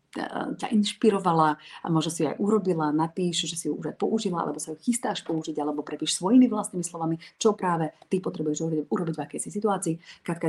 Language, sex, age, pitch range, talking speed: Slovak, female, 30-49, 150-180 Hz, 200 wpm